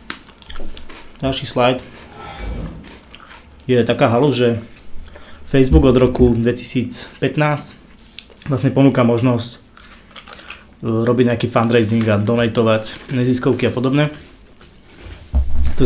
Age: 20-39